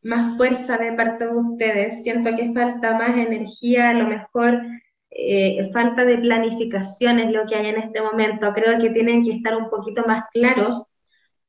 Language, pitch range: Spanish, 220-260 Hz